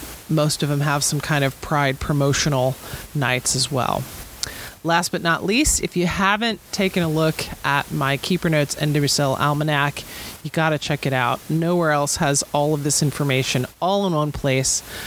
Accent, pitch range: American, 140-175 Hz